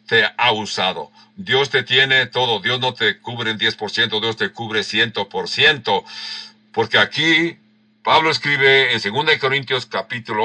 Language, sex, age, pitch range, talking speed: English, male, 60-79, 110-170 Hz, 145 wpm